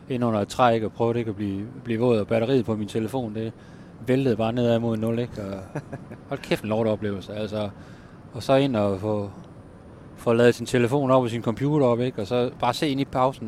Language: Danish